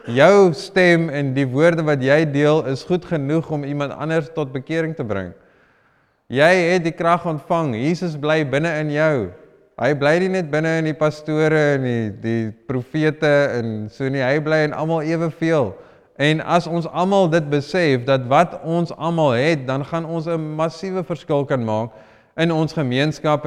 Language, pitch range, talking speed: English, 135-165 Hz, 175 wpm